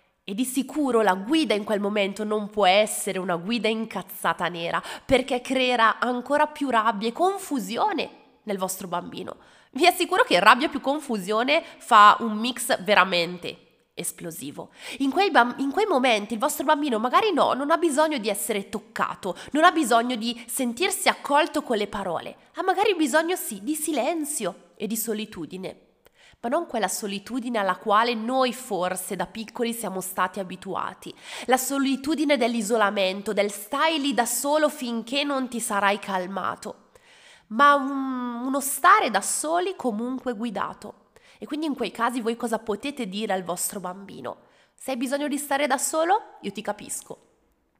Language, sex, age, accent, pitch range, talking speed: Italian, female, 20-39, native, 205-295 Hz, 155 wpm